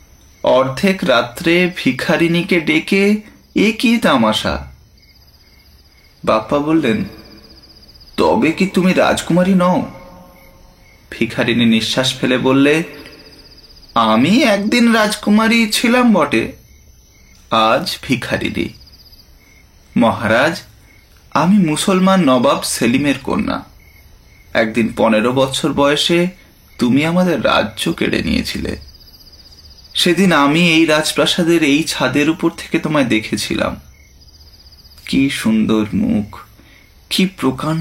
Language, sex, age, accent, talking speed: Bengali, male, 30-49, native, 65 wpm